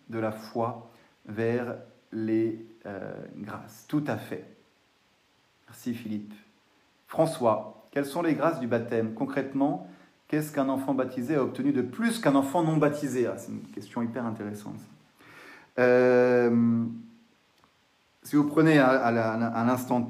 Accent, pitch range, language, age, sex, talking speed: French, 110-135 Hz, French, 30-49, male, 140 wpm